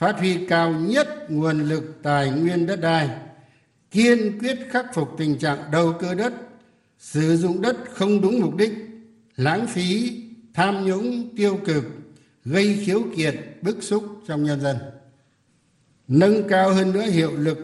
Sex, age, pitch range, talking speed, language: male, 60-79, 145-190 Hz, 155 wpm, Vietnamese